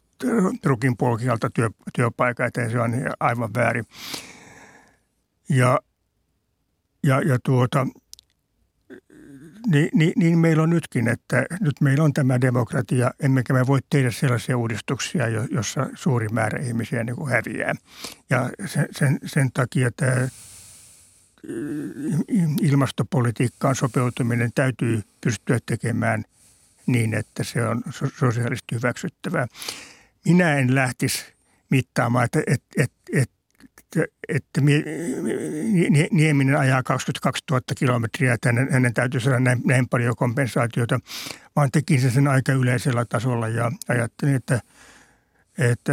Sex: male